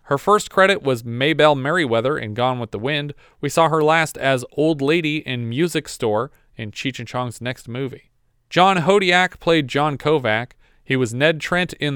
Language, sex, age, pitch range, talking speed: English, male, 40-59, 125-160 Hz, 185 wpm